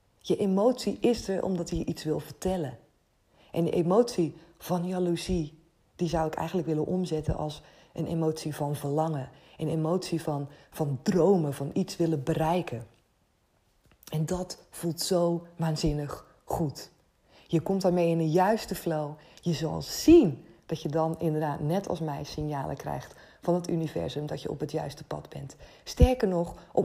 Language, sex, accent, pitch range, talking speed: Dutch, female, Dutch, 160-200 Hz, 160 wpm